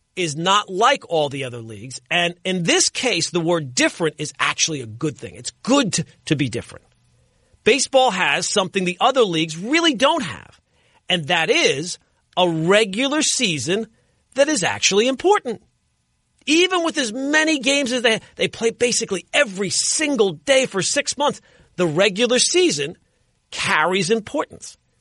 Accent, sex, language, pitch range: American, male, English, 170-250 Hz